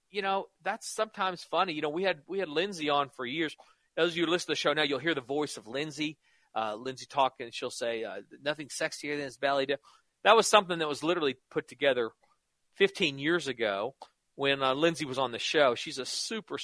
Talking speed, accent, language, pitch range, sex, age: 220 wpm, American, English, 150-200 Hz, male, 40-59